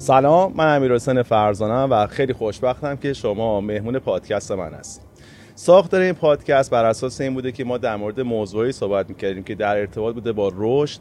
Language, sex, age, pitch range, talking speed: Persian, male, 30-49, 110-135 Hz, 185 wpm